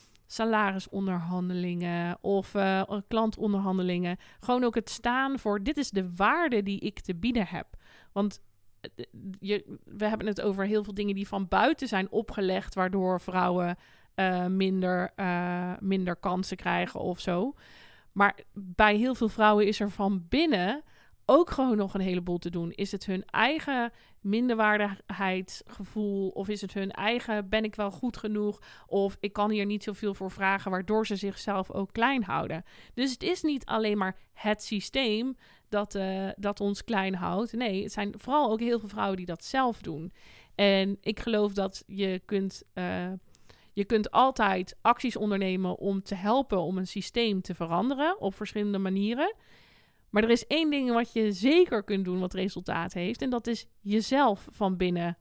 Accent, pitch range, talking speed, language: Dutch, 185-220 Hz, 165 wpm, Dutch